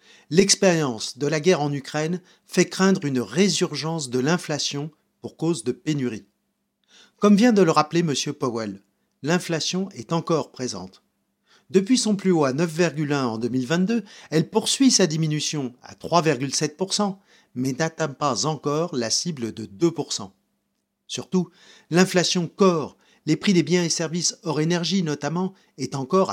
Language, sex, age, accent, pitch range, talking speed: French, male, 40-59, French, 135-185 Hz, 140 wpm